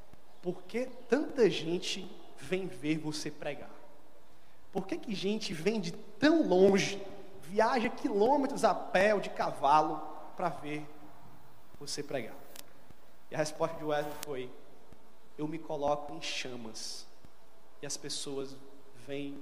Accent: Brazilian